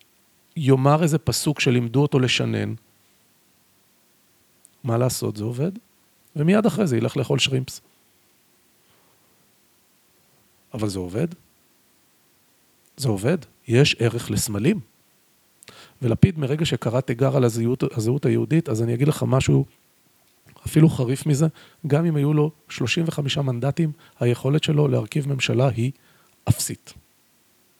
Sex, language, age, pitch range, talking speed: male, Hebrew, 40-59, 120-160 Hz, 110 wpm